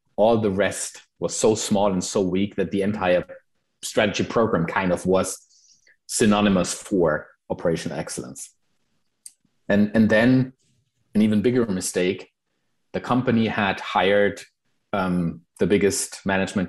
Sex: male